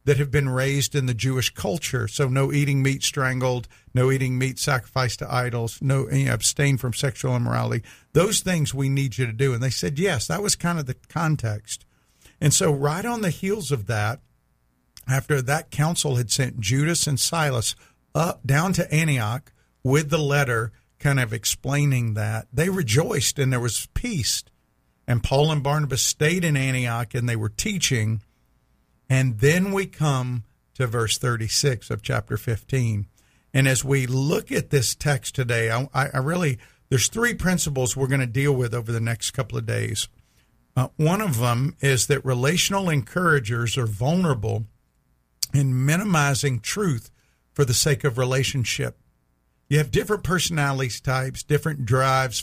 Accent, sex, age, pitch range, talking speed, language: American, male, 50-69, 120-145 Hz, 165 wpm, English